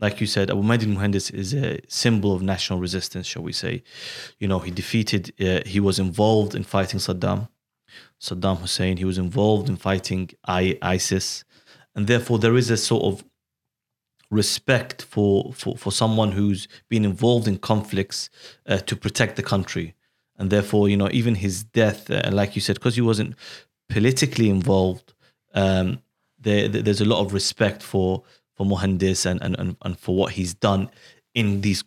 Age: 30-49